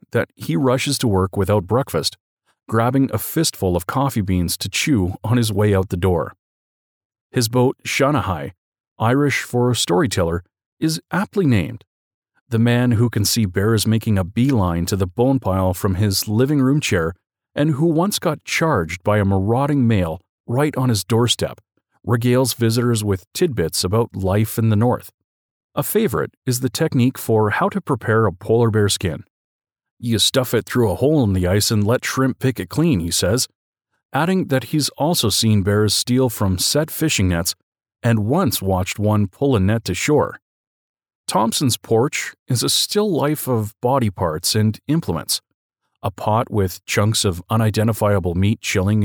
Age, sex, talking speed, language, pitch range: 40-59, male, 170 wpm, English, 95-130 Hz